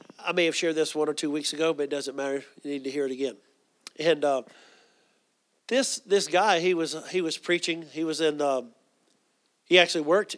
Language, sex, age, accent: English, male, 50-69, American